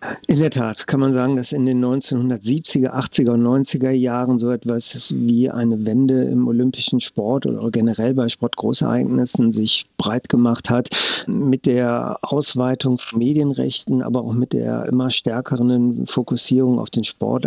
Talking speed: 155 wpm